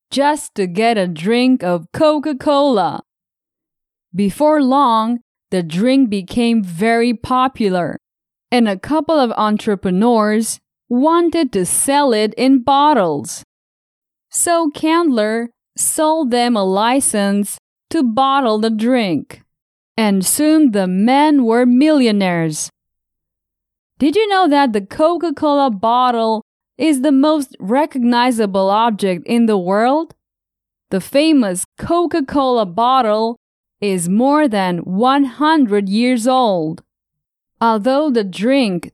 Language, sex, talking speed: English, female, 105 wpm